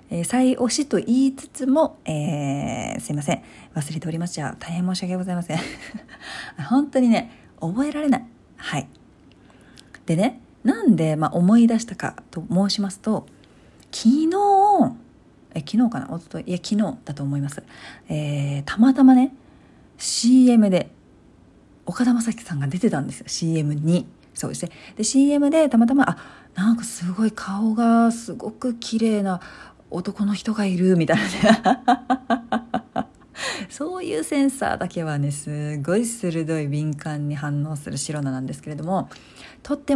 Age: 40-59